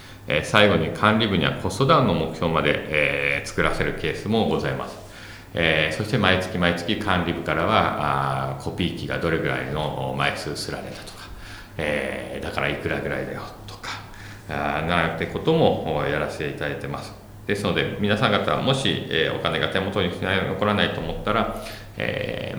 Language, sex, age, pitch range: Japanese, male, 40-59, 75-100 Hz